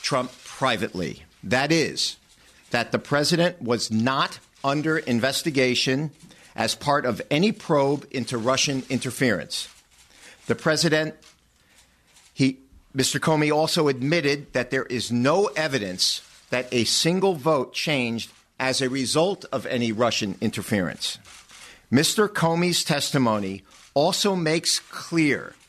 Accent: American